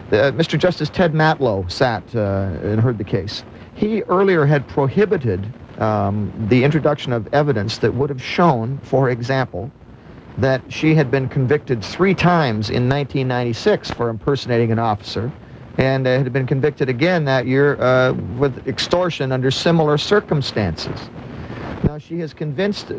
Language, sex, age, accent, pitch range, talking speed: English, male, 50-69, American, 115-150 Hz, 150 wpm